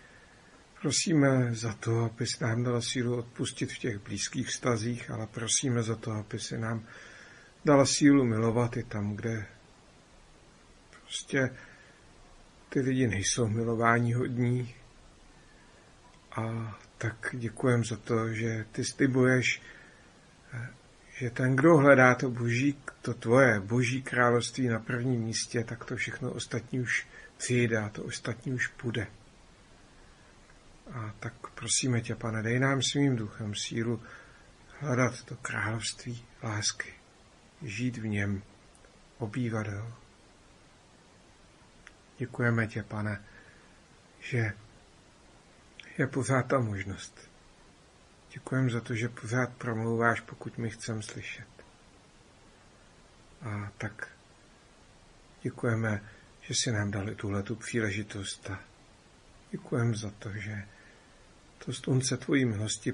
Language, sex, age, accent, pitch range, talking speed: Czech, male, 50-69, native, 110-125 Hz, 115 wpm